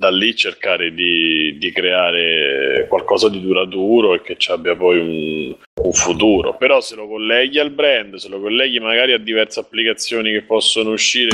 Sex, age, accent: male, 30-49, native